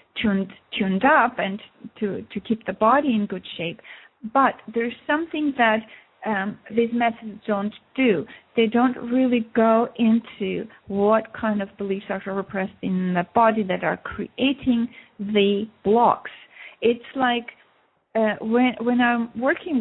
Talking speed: 140 wpm